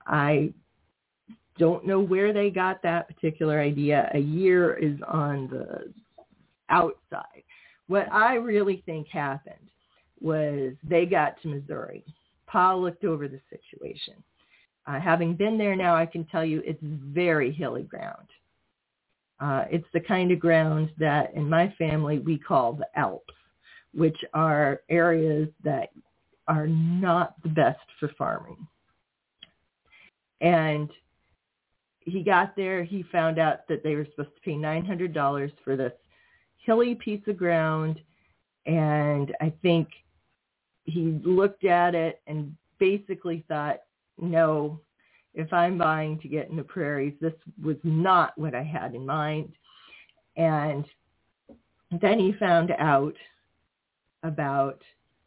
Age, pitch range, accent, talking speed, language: 40-59, 150-175 Hz, American, 130 wpm, English